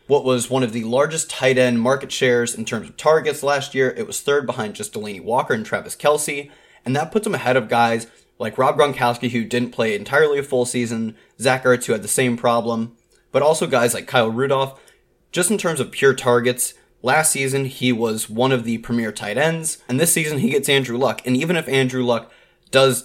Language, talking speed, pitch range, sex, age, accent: English, 220 wpm, 115-140 Hz, male, 20-39, American